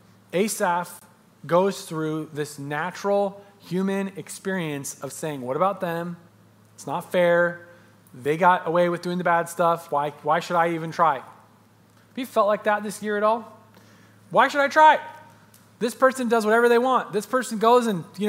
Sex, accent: male, American